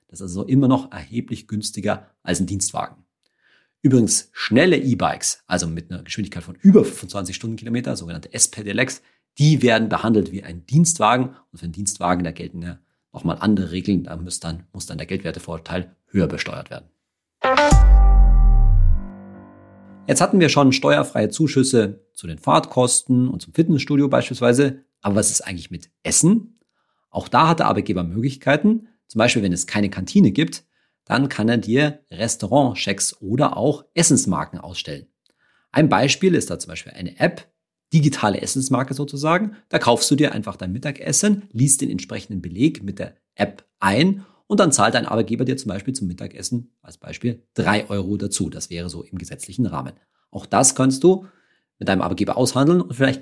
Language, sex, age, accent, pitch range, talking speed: German, male, 40-59, German, 95-140 Hz, 165 wpm